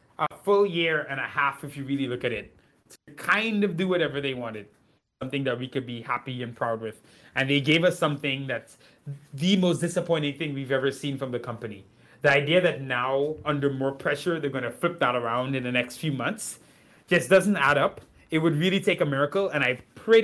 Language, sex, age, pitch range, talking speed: English, male, 20-39, 135-195 Hz, 220 wpm